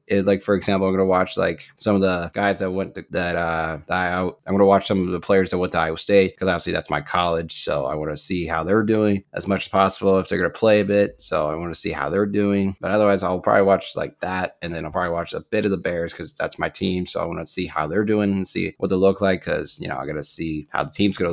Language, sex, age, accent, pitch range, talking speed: English, male, 20-39, American, 90-100 Hz, 295 wpm